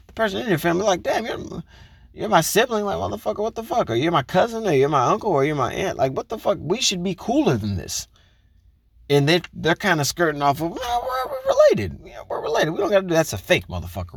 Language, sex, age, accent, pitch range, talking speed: English, male, 30-49, American, 85-145 Hz, 260 wpm